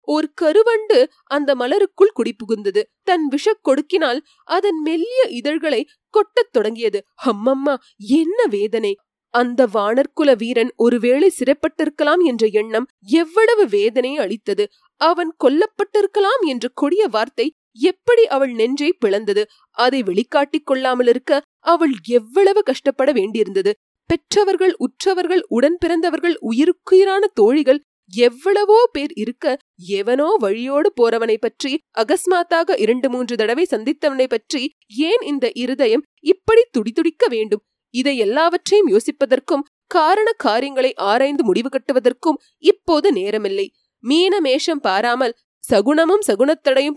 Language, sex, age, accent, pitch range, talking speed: Tamil, female, 20-39, native, 255-385 Hz, 95 wpm